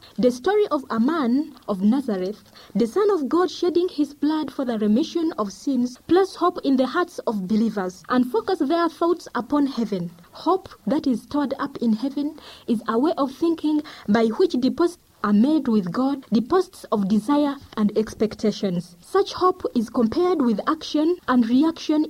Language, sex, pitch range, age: English, female, 220-310 Hz, 30-49